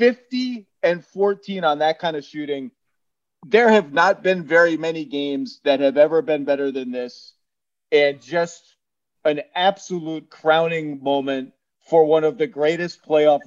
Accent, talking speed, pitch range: American, 150 wpm, 145-195 Hz